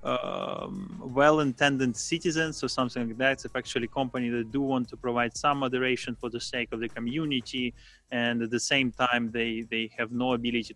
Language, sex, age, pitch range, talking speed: English, male, 20-39, 125-145 Hz, 185 wpm